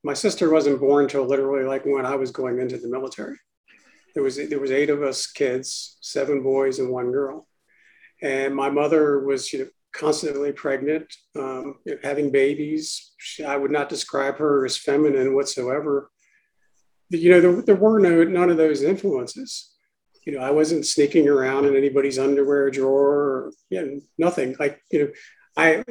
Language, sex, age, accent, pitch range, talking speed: English, male, 50-69, American, 135-160 Hz, 175 wpm